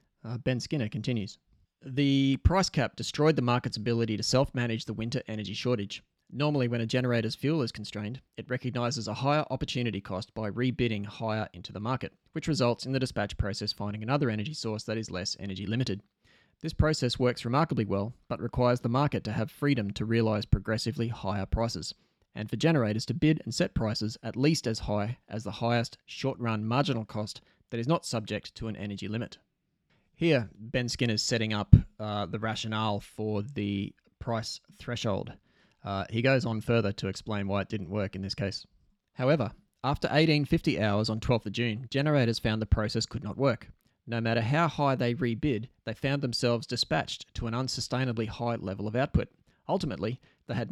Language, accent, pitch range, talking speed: English, Australian, 105-130 Hz, 185 wpm